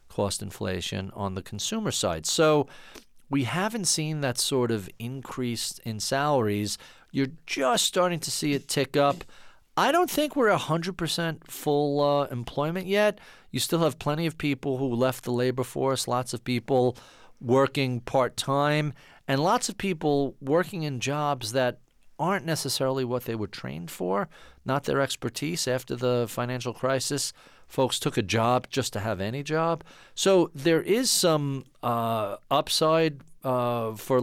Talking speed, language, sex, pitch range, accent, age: 155 wpm, English, male, 120-155 Hz, American, 40-59